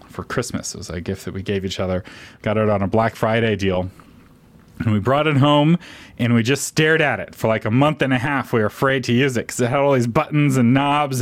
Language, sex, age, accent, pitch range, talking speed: English, male, 30-49, American, 110-145 Hz, 265 wpm